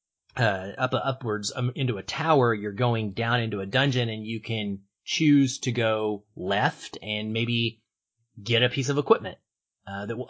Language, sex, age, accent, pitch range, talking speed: English, male, 30-49, American, 105-130 Hz, 175 wpm